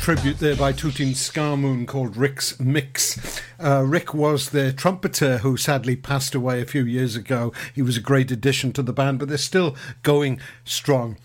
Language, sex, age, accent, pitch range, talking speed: English, male, 60-79, British, 130-150 Hz, 185 wpm